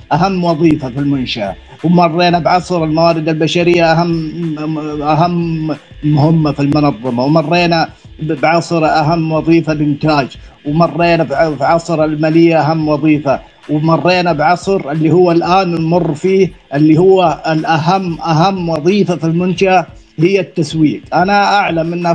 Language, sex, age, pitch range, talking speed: Arabic, male, 50-69, 155-185 Hz, 115 wpm